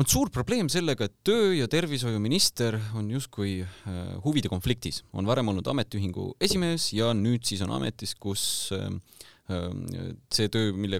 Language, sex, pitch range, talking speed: English, male, 100-135 Hz, 135 wpm